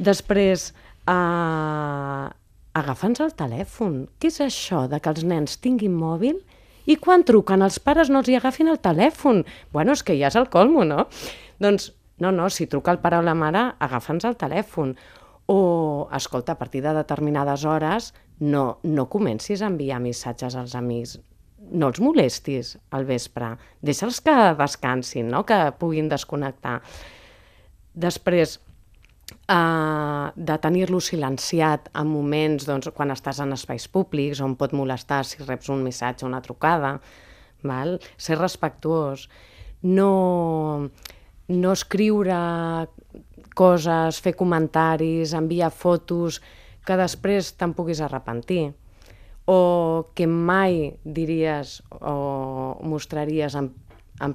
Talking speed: 130 wpm